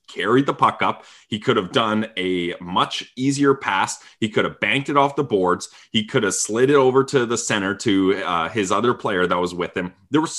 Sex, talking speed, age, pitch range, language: male, 230 wpm, 20-39, 95-140 Hz, English